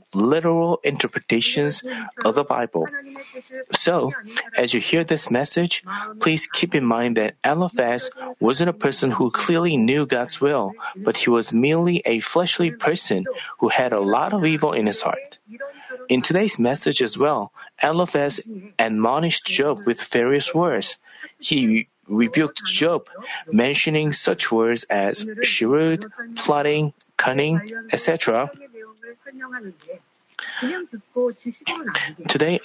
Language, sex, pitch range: Korean, male, 135-200 Hz